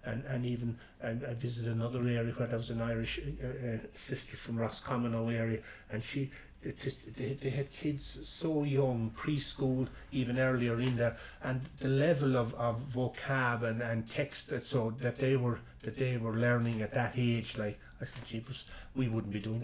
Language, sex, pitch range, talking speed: English, male, 110-130 Hz, 195 wpm